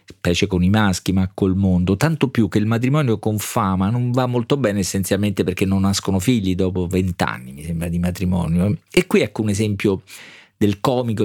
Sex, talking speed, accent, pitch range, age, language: male, 190 wpm, native, 95-110 Hz, 40-59, Italian